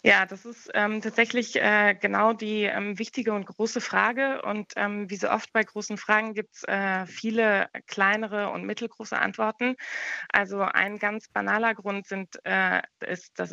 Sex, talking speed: female, 170 wpm